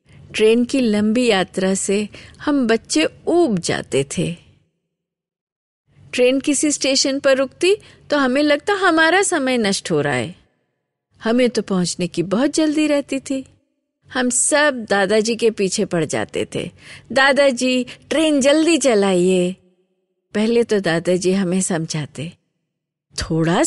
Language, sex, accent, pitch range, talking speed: Hindi, female, native, 180-275 Hz, 125 wpm